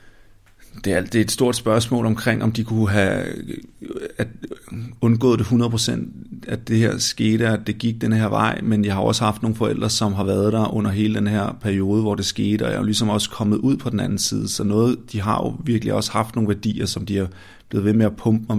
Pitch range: 105-115 Hz